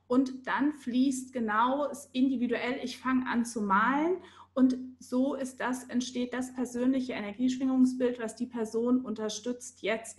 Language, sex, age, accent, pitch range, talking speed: German, female, 30-49, German, 220-260 Hz, 135 wpm